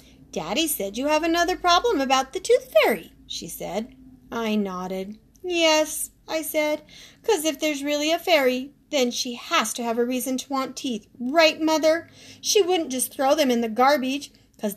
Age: 40-59